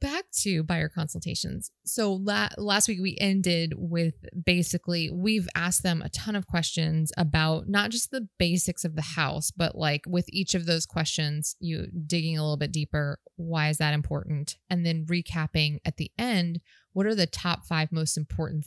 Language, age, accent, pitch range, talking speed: English, 20-39, American, 155-180 Hz, 180 wpm